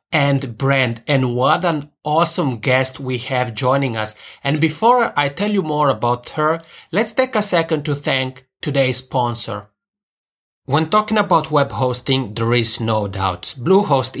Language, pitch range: English, 125-160 Hz